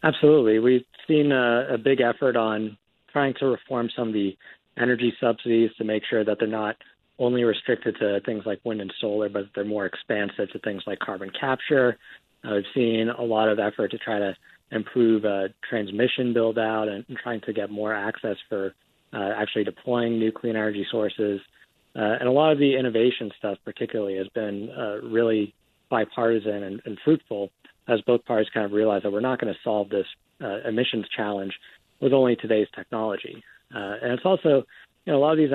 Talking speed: 195 wpm